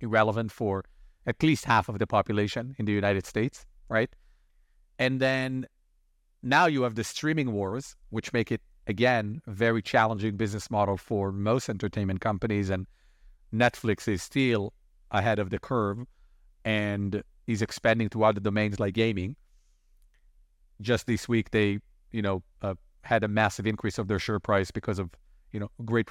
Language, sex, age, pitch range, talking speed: English, male, 40-59, 105-135 Hz, 160 wpm